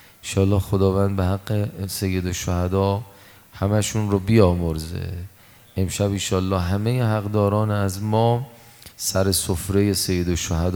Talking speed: 100 wpm